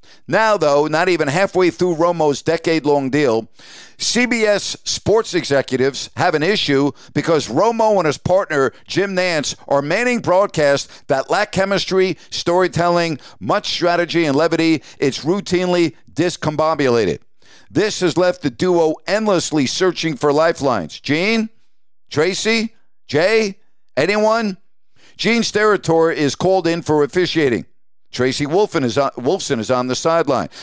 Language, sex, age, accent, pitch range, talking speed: English, male, 50-69, American, 145-190 Hz, 125 wpm